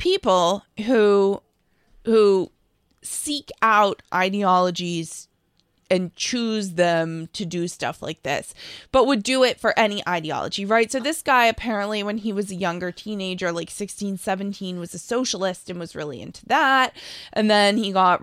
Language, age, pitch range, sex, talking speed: English, 20-39, 180-230 Hz, female, 155 wpm